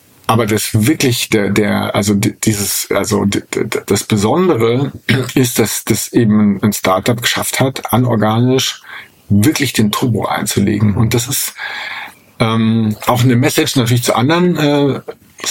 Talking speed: 130 wpm